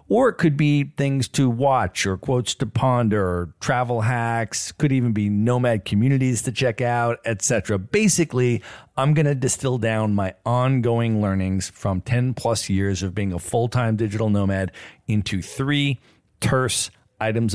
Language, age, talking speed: English, 40-59, 155 wpm